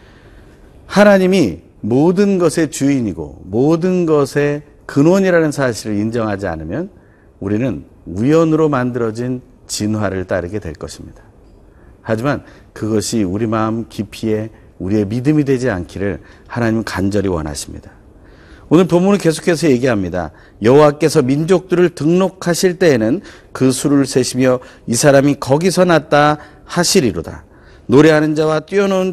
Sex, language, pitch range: male, Korean, 100-155 Hz